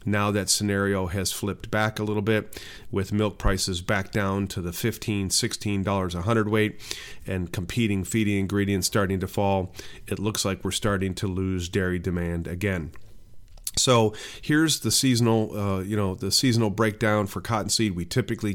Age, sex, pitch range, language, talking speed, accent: 40-59, male, 95-105 Hz, English, 165 wpm, American